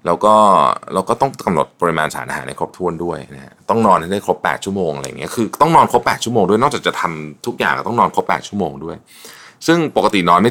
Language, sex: Thai, male